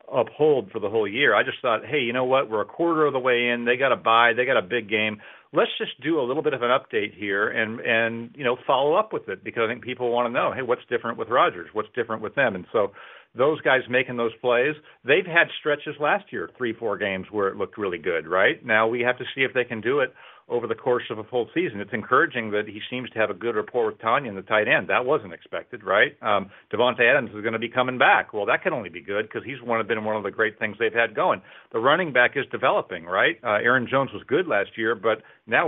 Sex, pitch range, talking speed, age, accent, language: male, 110-150 Hz, 275 wpm, 40-59, American, English